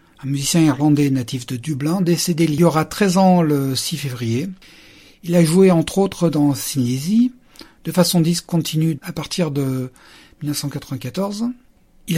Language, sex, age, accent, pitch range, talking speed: French, male, 50-69, French, 145-195 Hz, 150 wpm